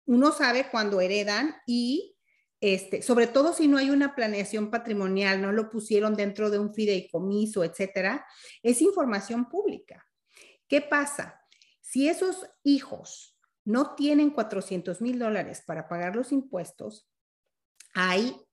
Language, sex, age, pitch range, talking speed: Spanish, female, 40-59, 190-245 Hz, 130 wpm